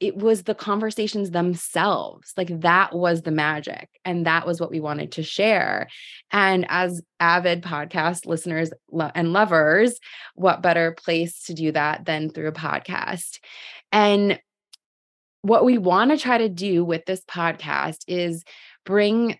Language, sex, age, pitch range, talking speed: English, female, 20-39, 165-190 Hz, 150 wpm